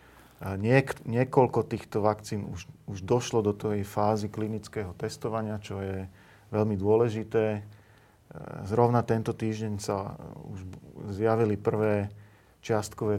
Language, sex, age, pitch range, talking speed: Slovak, male, 40-59, 105-115 Hz, 105 wpm